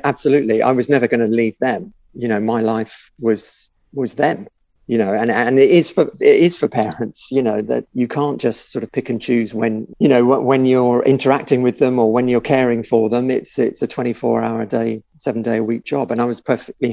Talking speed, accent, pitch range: 240 wpm, British, 110-130 Hz